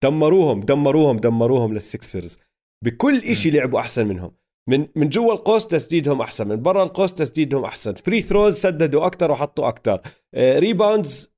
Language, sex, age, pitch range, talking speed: Arabic, male, 30-49, 120-195 Hz, 140 wpm